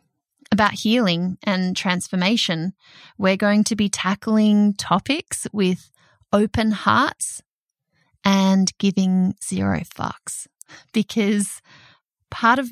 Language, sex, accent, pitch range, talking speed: English, female, Australian, 190-255 Hz, 95 wpm